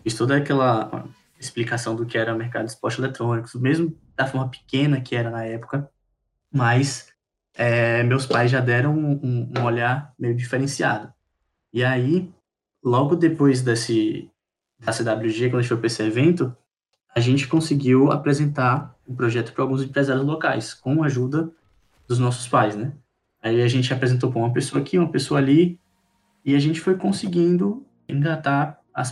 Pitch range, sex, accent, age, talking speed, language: 120-140 Hz, male, Brazilian, 20-39, 165 wpm, Portuguese